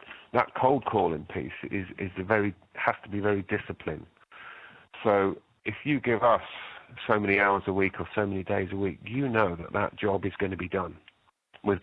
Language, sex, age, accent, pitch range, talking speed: English, male, 40-59, British, 90-100 Hz, 205 wpm